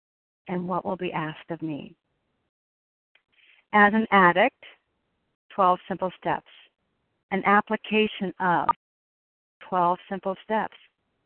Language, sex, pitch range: English, female, 170-205 Hz